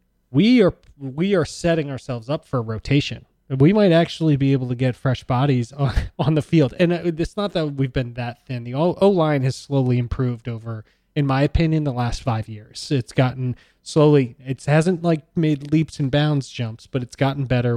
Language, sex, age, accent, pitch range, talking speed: English, male, 20-39, American, 115-140 Hz, 195 wpm